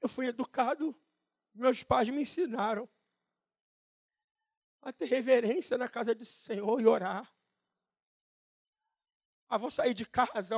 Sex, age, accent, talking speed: male, 50-69, Brazilian, 120 wpm